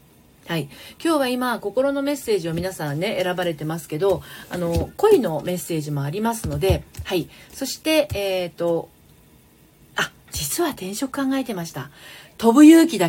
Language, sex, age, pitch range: Japanese, female, 40-59, 165-255 Hz